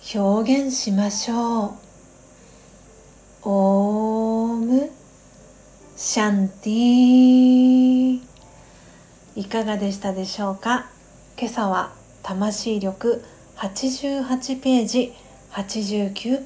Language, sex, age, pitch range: Japanese, female, 40-59, 195-230 Hz